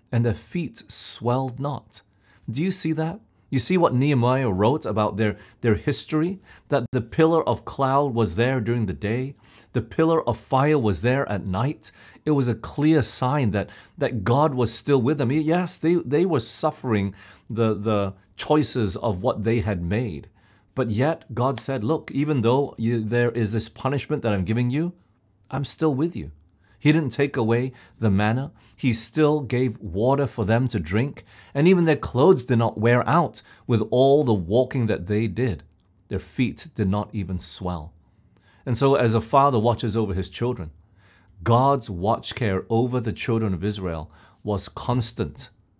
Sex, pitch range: male, 100-135 Hz